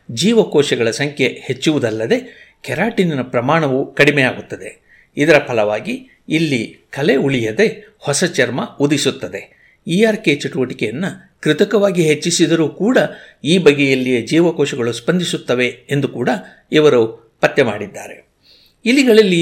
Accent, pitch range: native, 130-185 Hz